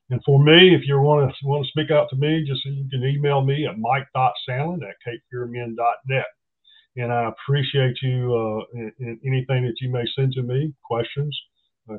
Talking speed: 190 wpm